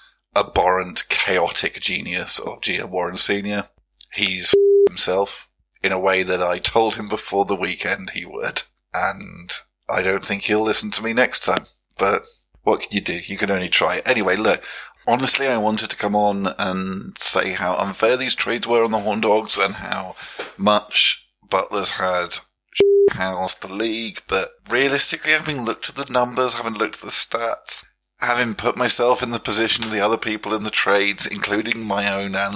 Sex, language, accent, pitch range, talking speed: male, English, British, 100-125 Hz, 180 wpm